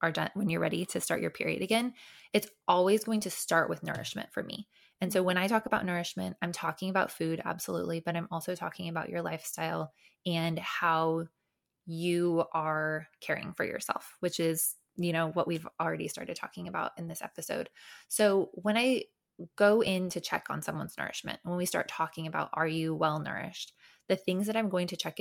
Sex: female